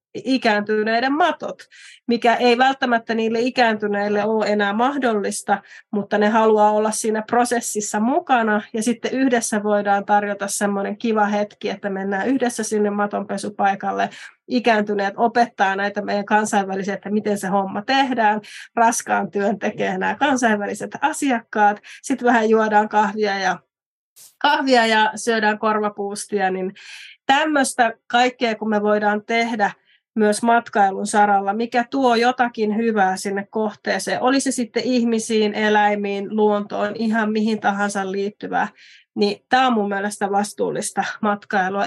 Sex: female